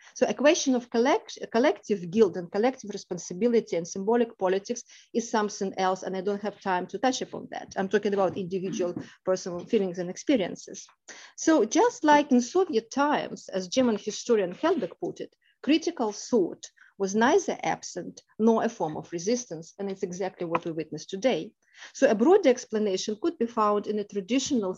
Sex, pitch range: female, 190-255 Hz